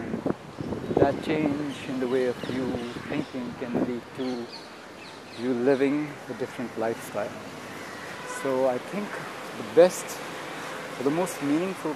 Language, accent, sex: English, Indian, male